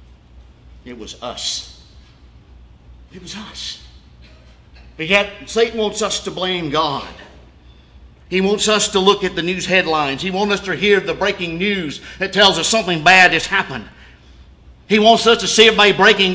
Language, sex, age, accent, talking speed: English, male, 50-69, American, 165 wpm